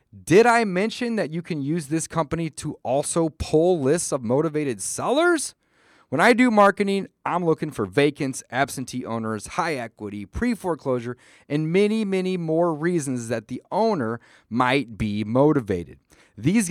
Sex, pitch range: male, 120-180 Hz